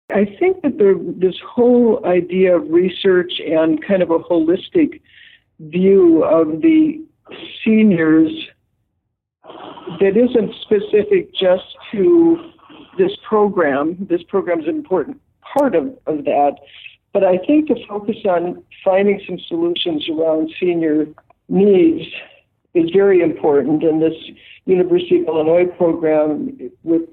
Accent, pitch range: American, 160-255 Hz